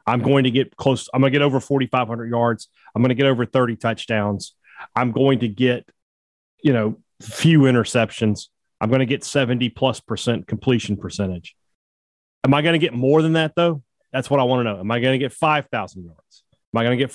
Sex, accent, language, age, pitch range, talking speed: male, American, English, 30-49, 105-135 Hz, 220 wpm